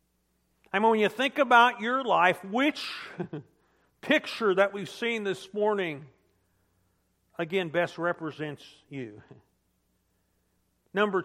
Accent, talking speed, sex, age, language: American, 105 wpm, male, 50-69, English